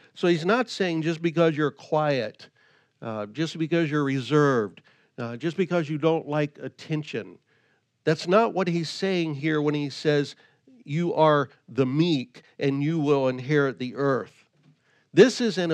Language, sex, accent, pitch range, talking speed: English, male, American, 140-170 Hz, 160 wpm